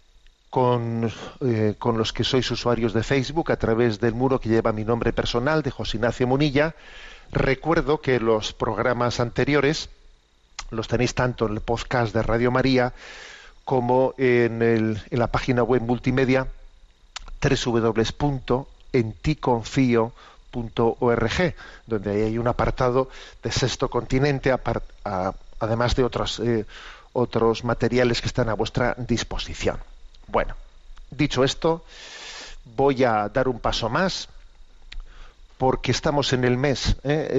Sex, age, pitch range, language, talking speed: male, 40-59, 115-135 Hz, Spanish, 130 wpm